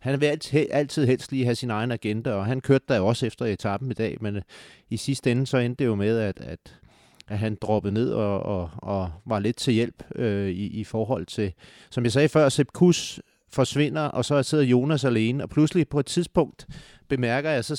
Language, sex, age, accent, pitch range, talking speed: Danish, male, 30-49, native, 105-140 Hz, 235 wpm